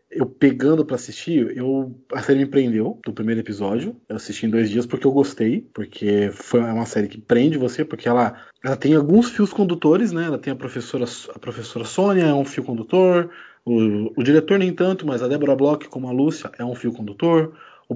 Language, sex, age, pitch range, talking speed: Portuguese, male, 20-39, 115-150 Hz, 210 wpm